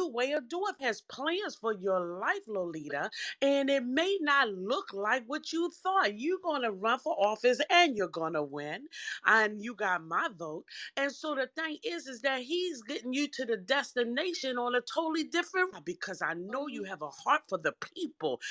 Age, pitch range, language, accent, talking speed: 30-49, 165-275 Hz, English, American, 200 wpm